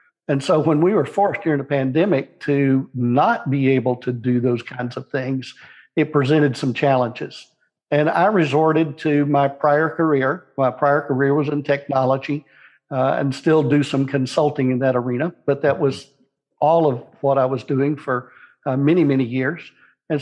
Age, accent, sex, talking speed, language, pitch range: 60-79, American, male, 180 wpm, English, 130-150 Hz